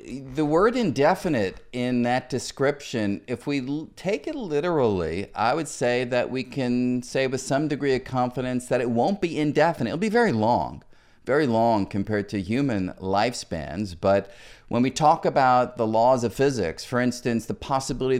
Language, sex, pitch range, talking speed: English, male, 110-145 Hz, 170 wpm